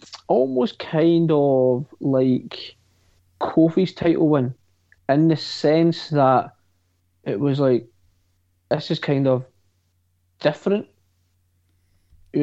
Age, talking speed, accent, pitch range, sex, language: 20-39, 95 wpm, British, 90-150 Hz, male, English